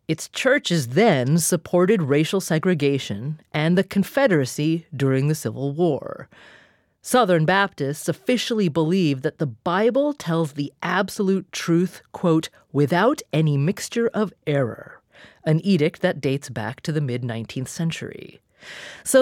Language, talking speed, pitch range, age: English, 125 wpm, 140-210 Hz, 30-49